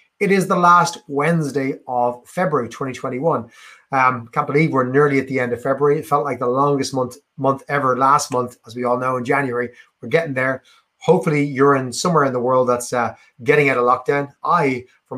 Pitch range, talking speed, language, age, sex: 125-150 Hz, 210 wpm, English, 30-49, male